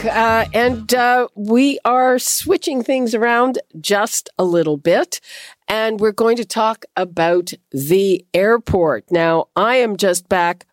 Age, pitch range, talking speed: 50-69, 175-230 Hz, 140 wpm